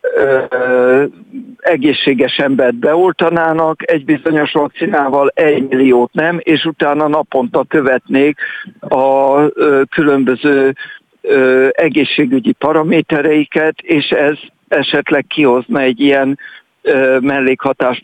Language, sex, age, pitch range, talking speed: Hungarian, male, 60-79, 130-155 Hz, 80 wpm